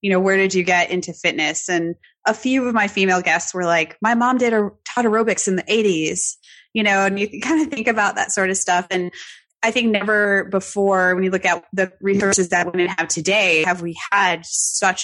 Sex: female